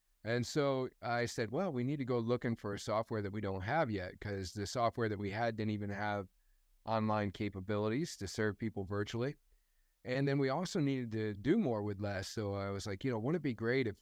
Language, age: English, 30-49